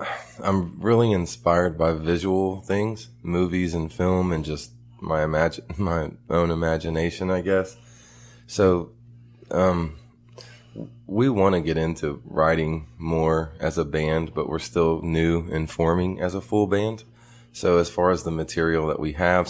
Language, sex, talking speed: English, male, 150 wpm